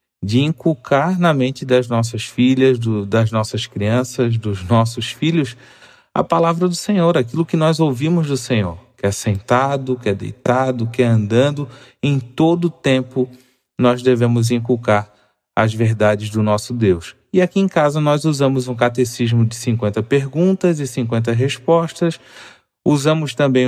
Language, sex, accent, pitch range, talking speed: Portuguese, male, Brazilian, 115-140 Hz, 150 wpm